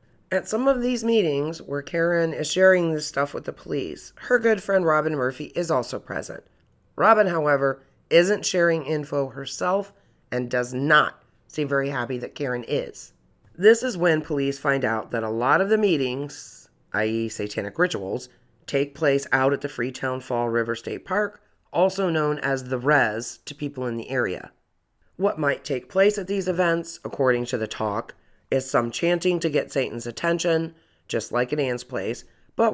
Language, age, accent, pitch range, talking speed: English, 40-59, American, 125-170 Hz, 175 wpm